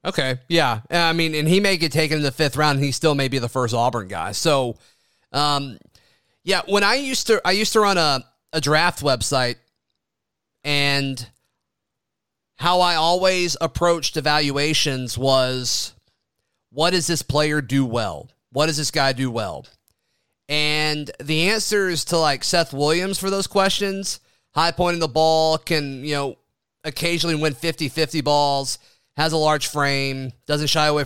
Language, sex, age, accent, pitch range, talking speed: English, male, 30-49, American, 135-175 Hz, 165 wpm